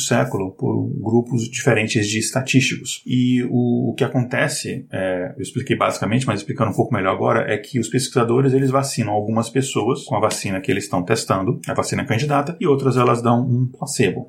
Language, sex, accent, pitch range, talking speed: Portuguese, male, Brazilian, 115-135 Hz, 180 wpm